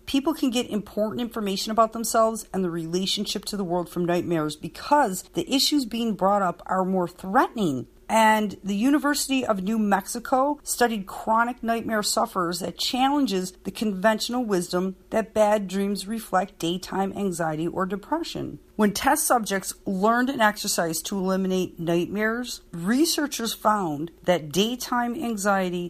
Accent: American